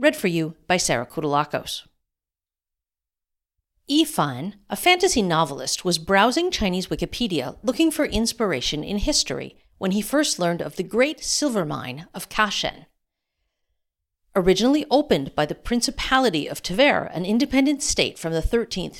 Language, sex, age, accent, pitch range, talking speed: English, female, 50-69, American, 165-260 Hz, 135 wpm